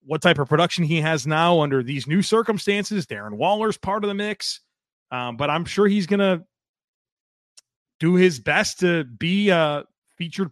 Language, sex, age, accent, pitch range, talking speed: English, male, 30-49, American, 135-180 Hz, 185 wpm